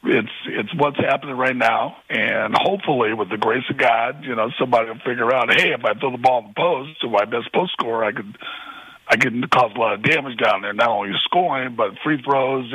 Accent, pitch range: American, 130-160 Hz